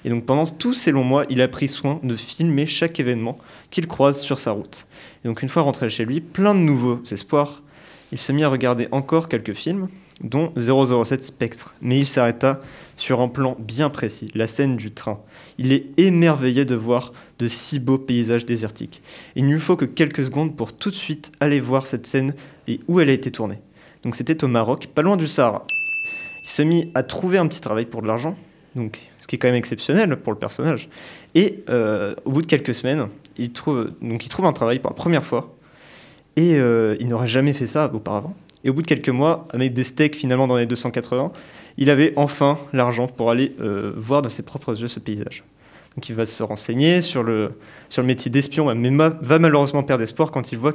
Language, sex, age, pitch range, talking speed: French, male, 20-39, 120-150 Hz, 220 wpm